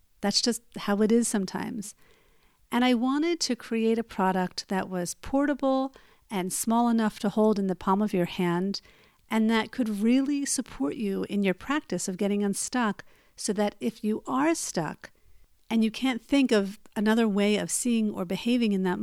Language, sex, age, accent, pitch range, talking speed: English, female, 50-69, American, 190-235 Hz, 185 wpm